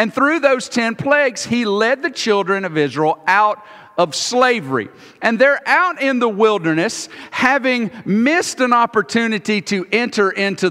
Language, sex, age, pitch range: English, male, 50-69, 175-245 Hz